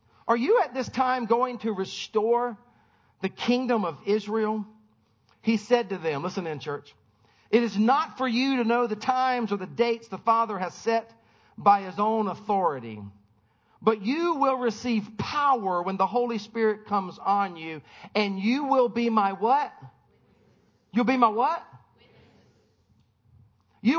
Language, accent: English, American